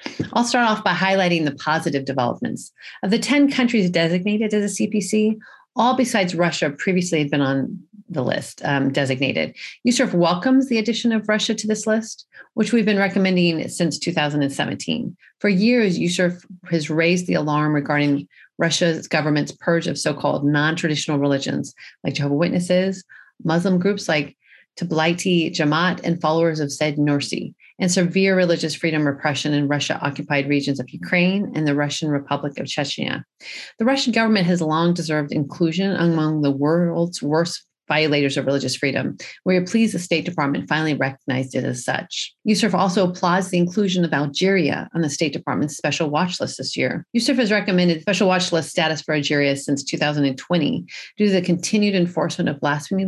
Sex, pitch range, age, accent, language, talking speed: female, 145-190 Hz, 40-59, American, English, 165 wpm